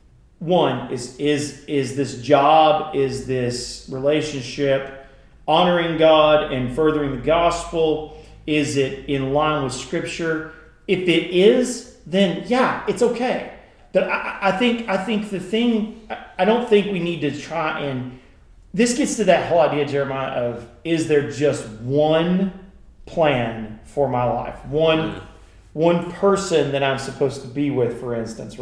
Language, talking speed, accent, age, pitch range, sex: English, 150 wpm, American, 40-59, 135-170 Hz, male